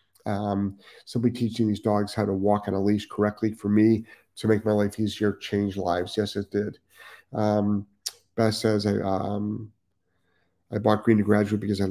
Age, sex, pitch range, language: 40-59, male, 100-110 Hz, English